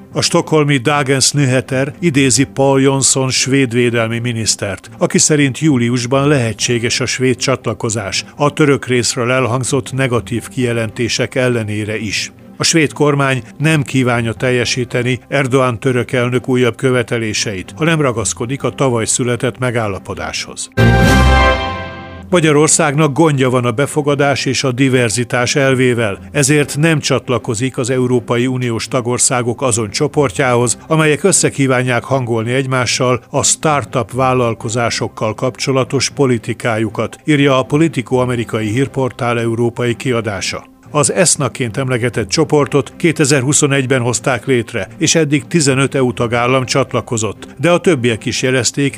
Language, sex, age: Hungarian, male, 50-69